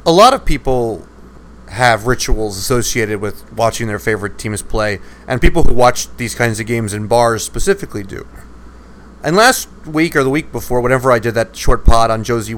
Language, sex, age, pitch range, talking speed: English, male, 30-49, 115-160 Hz, 190 wpm